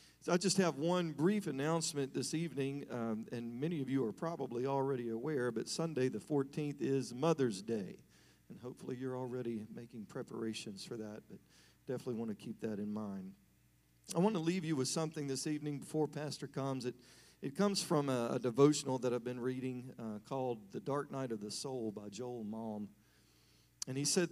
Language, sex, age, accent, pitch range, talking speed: English, male, 40-59, American, 115-150 Hz, 190 wpm